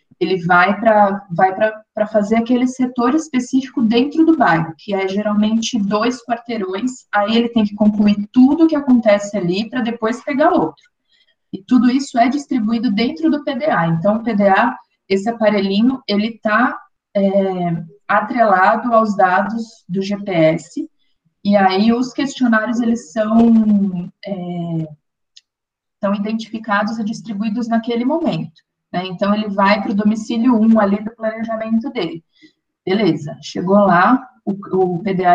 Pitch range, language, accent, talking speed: 185-235 Hz, Portuguese, Brazilian, 135 wpm